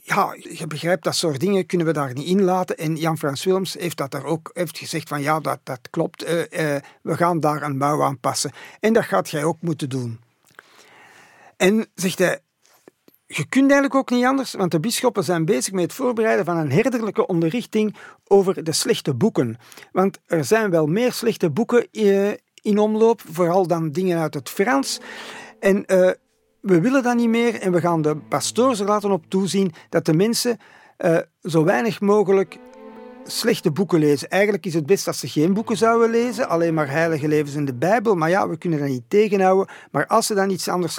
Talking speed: 200 wpm